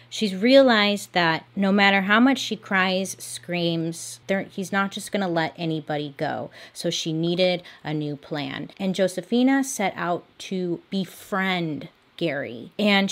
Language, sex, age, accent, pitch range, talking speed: English, female, 30-49, American, 165-210 Hz, 140 wpm